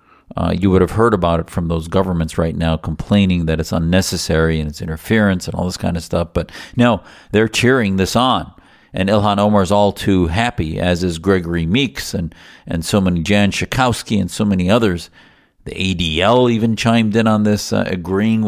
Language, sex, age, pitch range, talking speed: English, male, 50-69, 85-105 Hz, 200 wpm